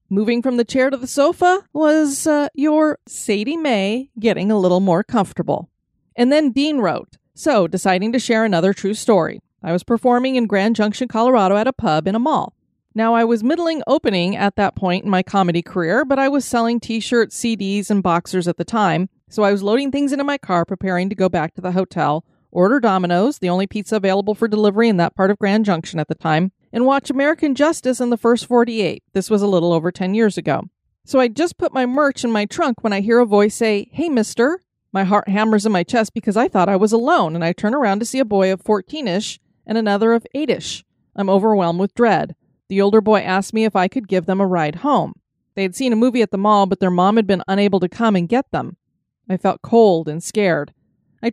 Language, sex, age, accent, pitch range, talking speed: English, female, 30-49, American, 190-245 Hz, 230 wpm